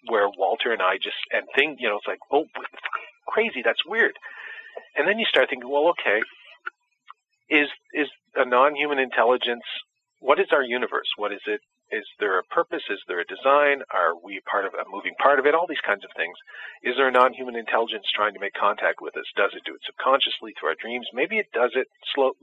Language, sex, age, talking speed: English, male, 40-59, 215 wpm